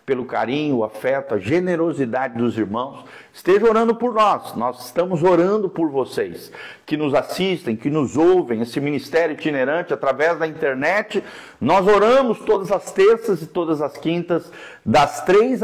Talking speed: 155 wpm